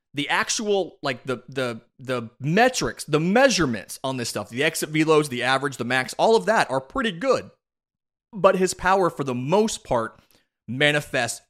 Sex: male